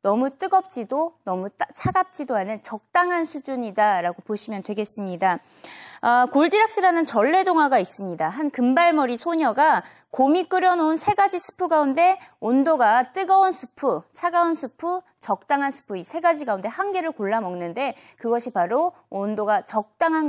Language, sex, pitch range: Korean, female, 210-315 Hz